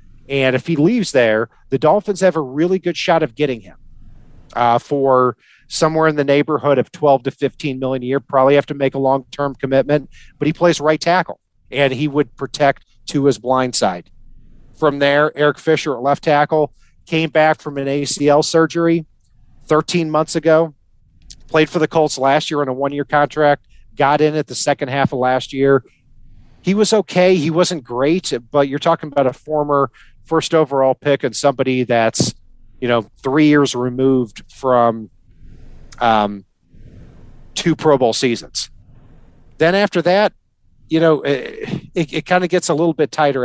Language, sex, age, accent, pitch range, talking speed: English, male, 40-59, American, 130-160 Hz, 180 wpm